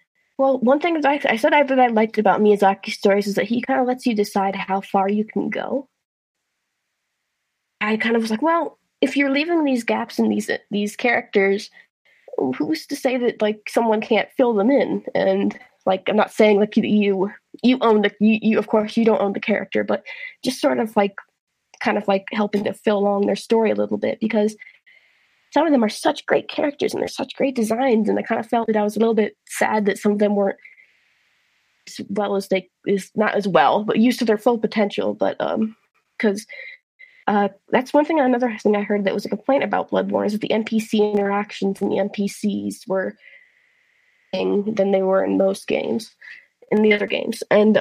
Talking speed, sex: 215 wpm, female